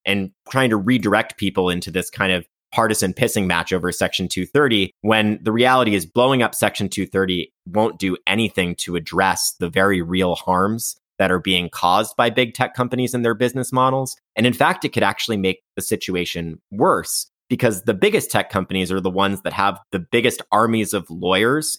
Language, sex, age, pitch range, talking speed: English, male, 30-49, 90-110 Hz, 190 wpm